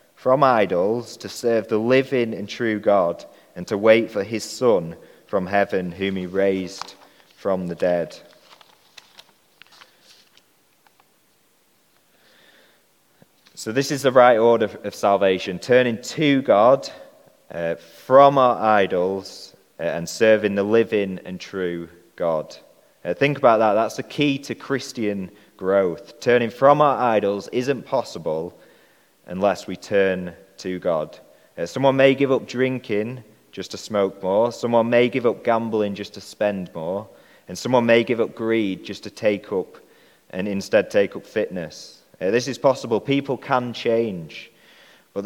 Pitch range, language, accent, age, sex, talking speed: 100-130 Hz, English, British, 30-49, male, 140 wpm